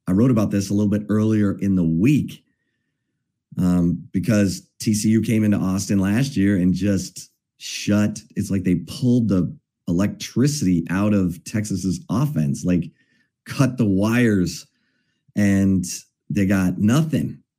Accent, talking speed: American, 135 wpm